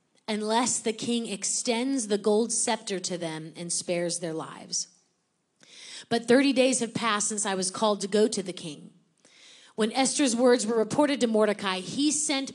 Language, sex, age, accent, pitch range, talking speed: English, female, 30-49, American, 180-235 Hz, 170 wpm